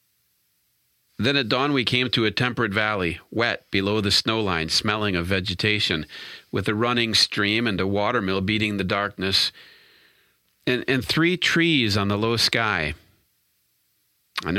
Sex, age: male, 40-59